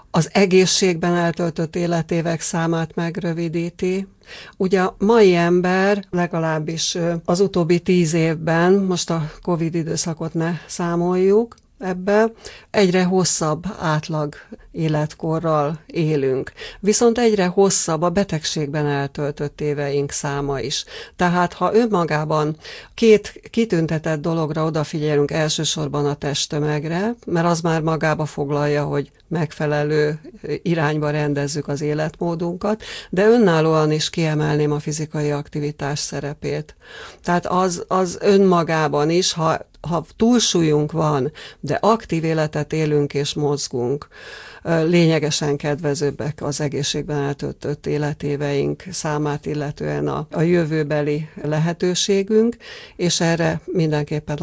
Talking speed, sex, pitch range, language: 105 wpm, female, 150-175 Hz, Hungarian